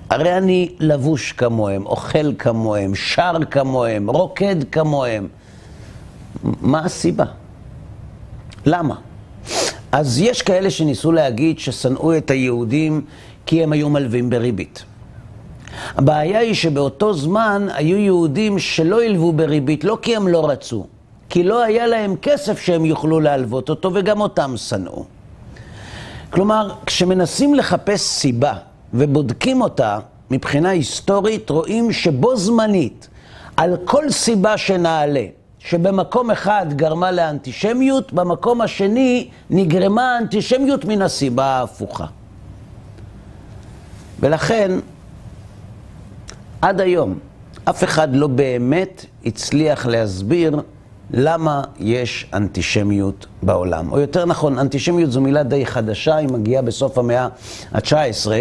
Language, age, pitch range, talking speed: Hebrew, 50-69, 115-185 Hz, 105 wpm